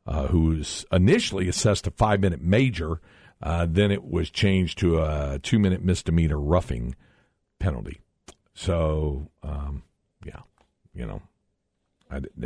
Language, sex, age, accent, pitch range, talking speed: English, male, 50-69, American, 75-100 Hz, 115 wpm